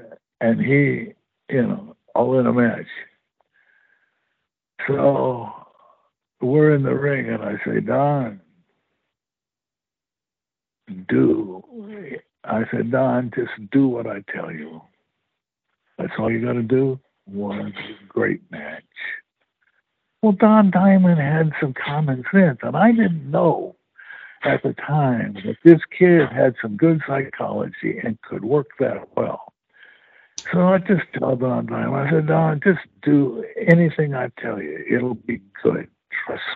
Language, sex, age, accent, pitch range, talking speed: English, male, 60-79, American, 130-170 Hz, 130 wpm